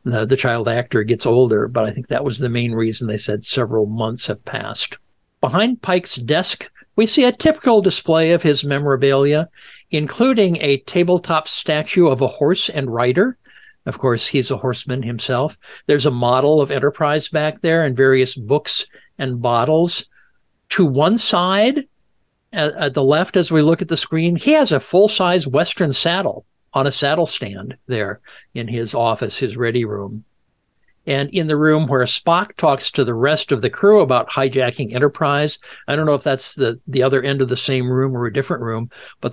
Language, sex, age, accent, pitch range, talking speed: English, male, 60-79, American, 125-170 Hz, 185 wpm